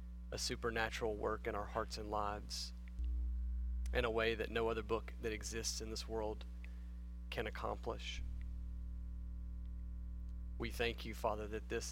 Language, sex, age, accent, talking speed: English, male, 40-59, American, 140 wpm